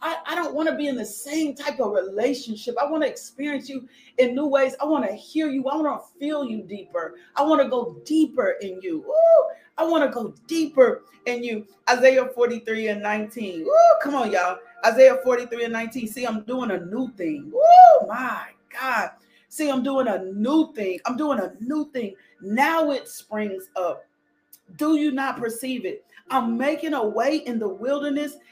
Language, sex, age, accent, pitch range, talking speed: English, female, 40-59, American, 235-300 Hz, 200 wpm